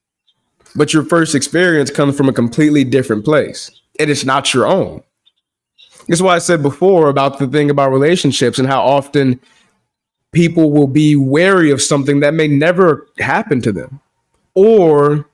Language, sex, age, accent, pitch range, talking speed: English, male, 20-39, American, 130-155 Hz, 160 wpm